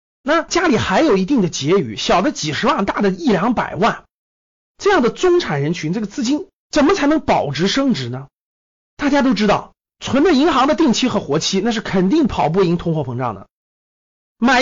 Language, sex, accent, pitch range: Chinese, male, native, 165-275 Hz